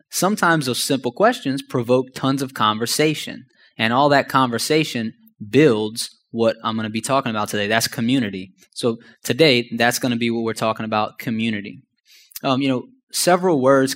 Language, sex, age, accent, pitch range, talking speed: English, male, 20-39, American, 115-140 Hz, 170 wpm